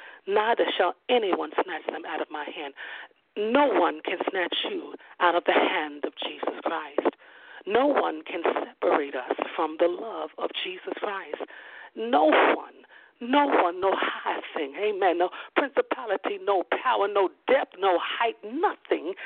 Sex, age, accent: female, 50-69, American